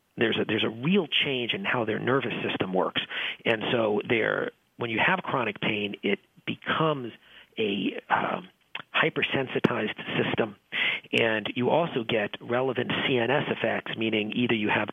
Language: English